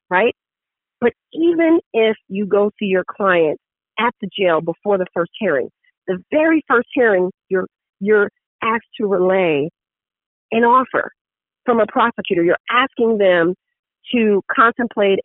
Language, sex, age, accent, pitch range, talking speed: English, female, 40-59, American, 185-245 Hz, 140 wpm